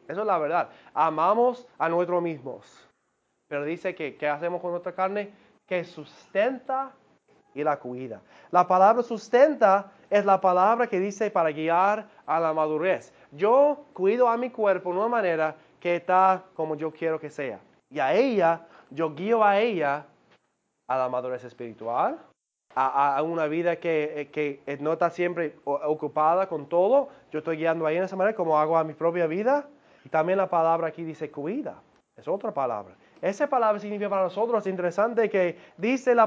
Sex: male